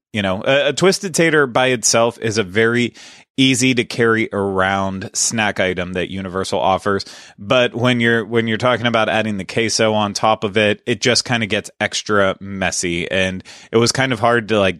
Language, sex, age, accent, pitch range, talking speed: English, male, 30-49, American, 95-115 Hz, 200 wpm